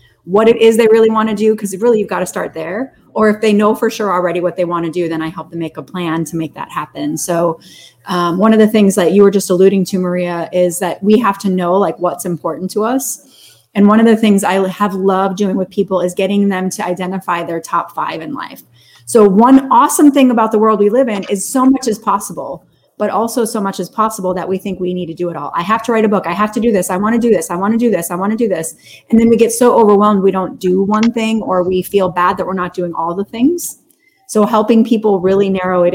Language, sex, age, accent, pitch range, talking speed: English, female, 30-49, American, 180-220 Hz, 275 wpm